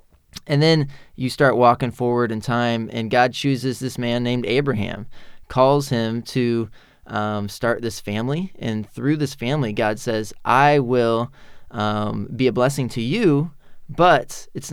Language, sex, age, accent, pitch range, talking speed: English, male, 20-39, American, 110-130 Hz, 155 wpm